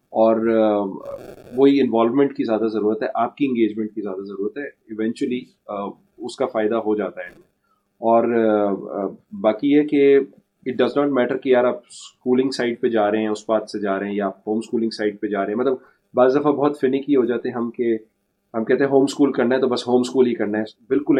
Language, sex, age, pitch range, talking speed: Urdu, male, 30-49, 110-135 Hz, 225 wpm